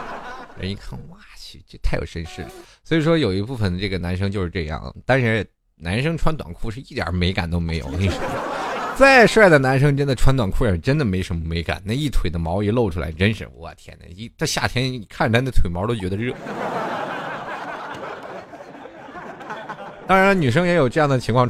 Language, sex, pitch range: Chinese, male, 90-135 Hz